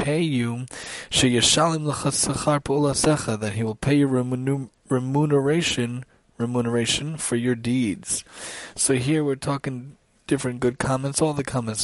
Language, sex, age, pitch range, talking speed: English, male, 20-39, 115-140 Hz, 130 wpm